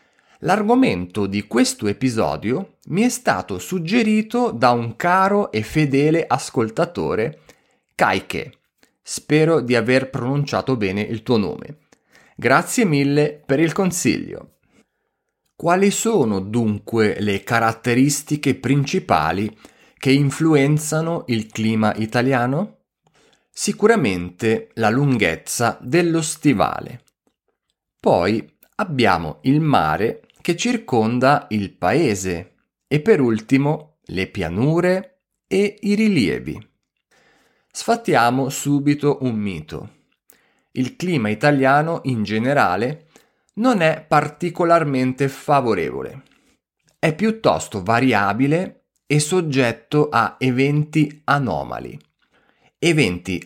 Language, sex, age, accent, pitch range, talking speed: Italian, male, 30-49, native, 110-165 Hz, 90 wpm